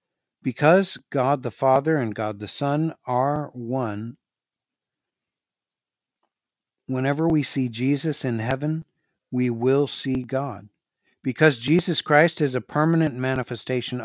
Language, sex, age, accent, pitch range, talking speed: English, male, 60-79, American, 115-145 Hz, 115 wpm